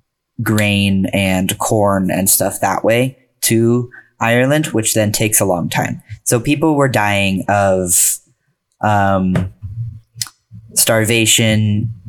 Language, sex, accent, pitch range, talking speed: English, male, American, 95-115 Hz, 110 wpm